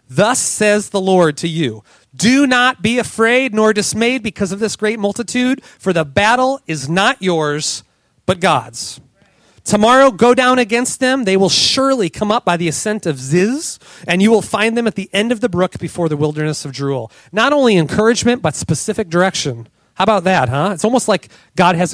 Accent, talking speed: American, 195 wpm